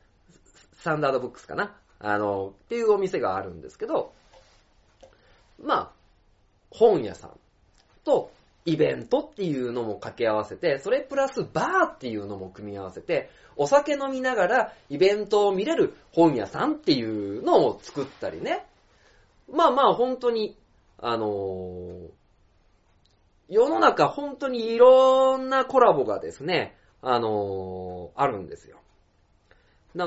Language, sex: Japanese, male